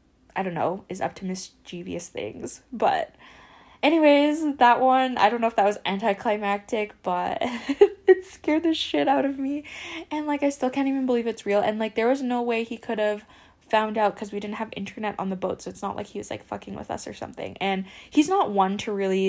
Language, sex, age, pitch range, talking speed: English, female, 10-29, 190-255 Hz, 225 wpm